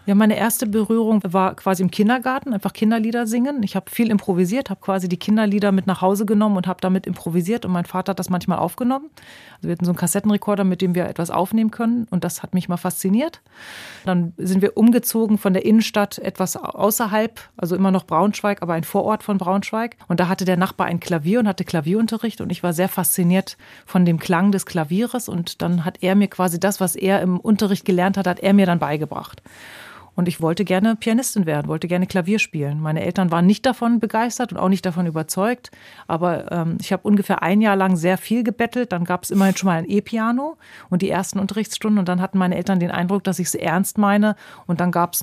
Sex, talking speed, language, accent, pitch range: female, 225 wpm, German, German, 175-210 Hz